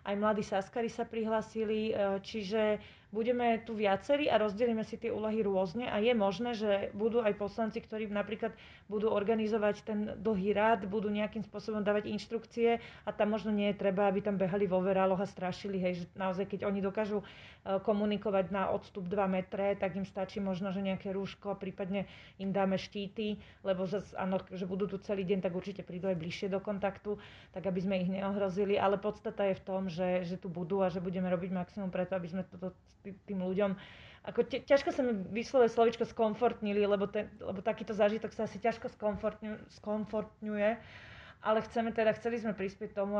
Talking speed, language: 180 wpm, Slovak